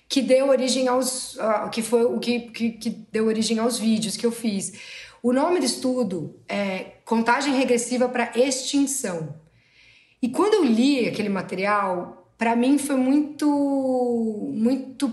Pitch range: 205-255 Hz